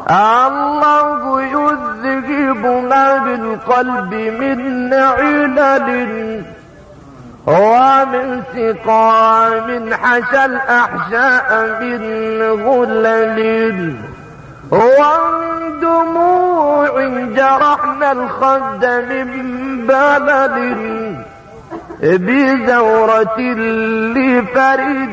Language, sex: English, male